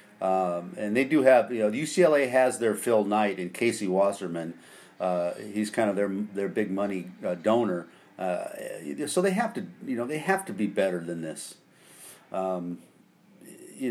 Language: English